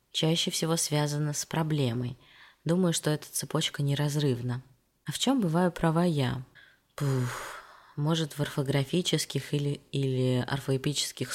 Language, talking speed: Russian, 115 wpm